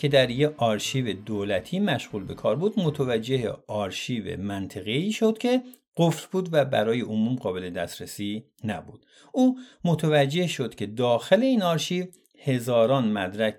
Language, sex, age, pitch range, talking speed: Persian, male, 50-69, 110-170 Hz, 135 wpm